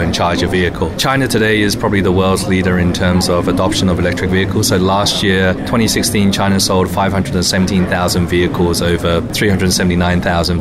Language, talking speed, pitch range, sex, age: English, 160 wpm, 90-100 Hz, male, 20-39